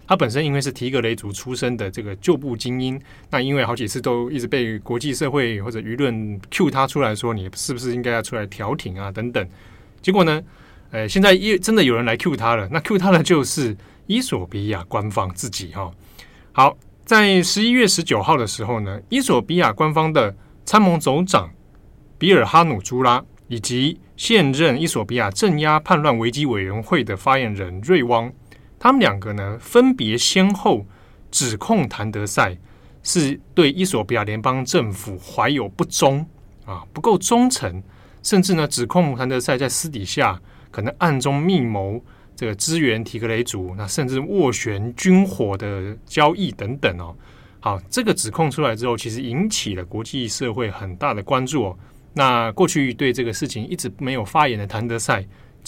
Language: Chinese